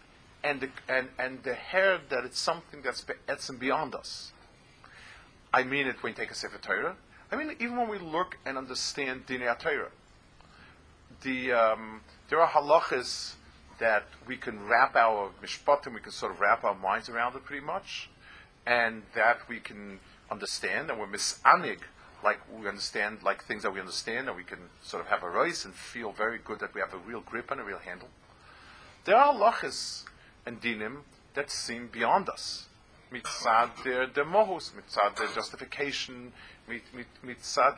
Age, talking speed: 50-69, 170 wpm